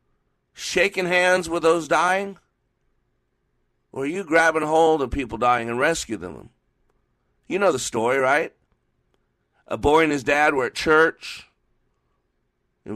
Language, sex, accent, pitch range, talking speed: English, male, American, 115-150 Hz, 140 wpm